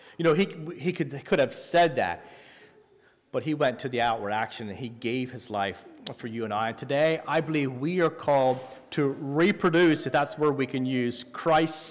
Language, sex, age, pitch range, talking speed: English, male, 30-49, 130-165 Hz, 205 wpm